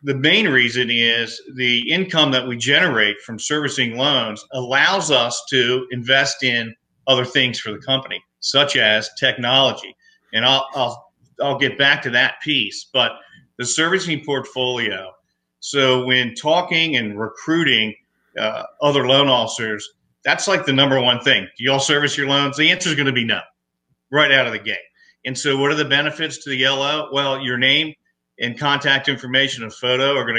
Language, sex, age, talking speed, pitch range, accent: English, male, 40-59, 180 wpm, 120-145 Hz, American